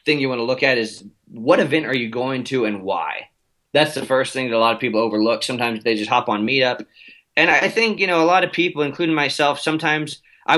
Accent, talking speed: American, 250 wpm